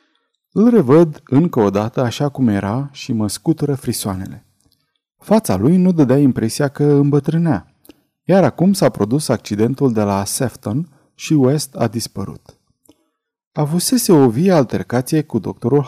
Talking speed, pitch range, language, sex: 140 wpm, 115-160 Hz, Romanian, male